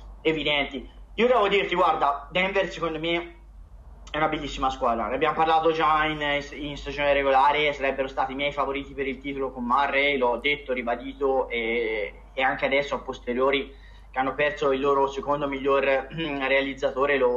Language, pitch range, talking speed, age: Italian, 130-165 Hz, 170 wpm, 20-39